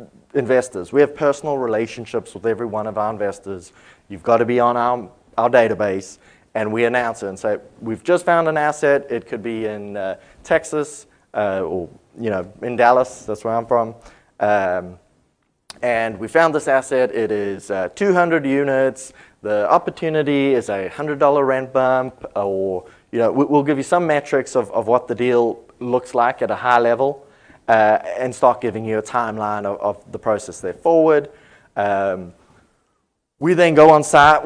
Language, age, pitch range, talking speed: English, 30-49, 110-145 Hz, 180 wpm